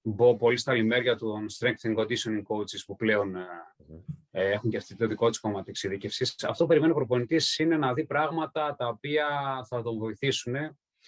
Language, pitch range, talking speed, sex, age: Greek, 110-135 Hz, 180 wpm, male, 30-49